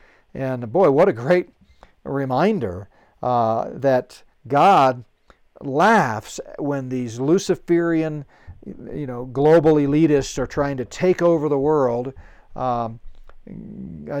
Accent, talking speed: American, 105 wpm